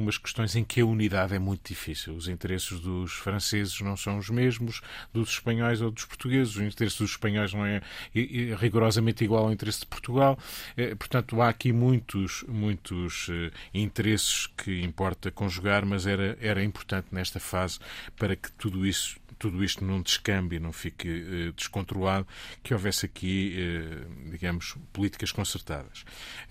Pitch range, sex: 95-110 Hz, male